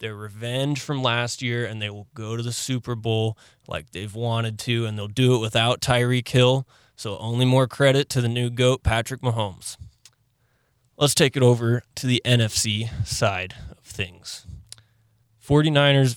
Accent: American